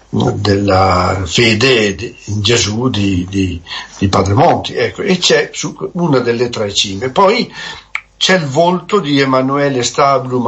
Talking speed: 135 wpm